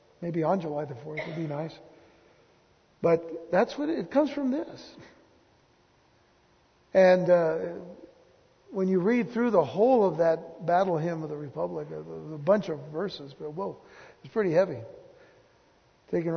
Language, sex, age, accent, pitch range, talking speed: English, male, 60-79, American, 165-210 Hz, 150 wpm